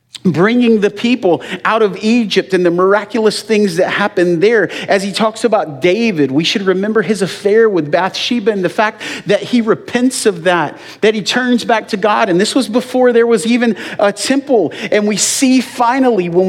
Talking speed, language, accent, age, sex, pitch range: 195 wpm, English, American, 40-59, male, 135-225 Hz